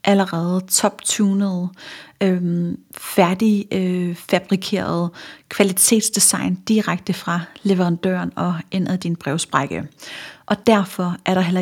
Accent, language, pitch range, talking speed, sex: native, Danish, 180-215 Hz, 100 wpm, female